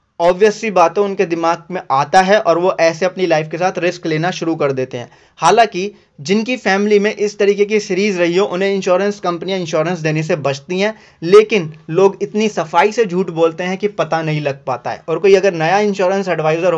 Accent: native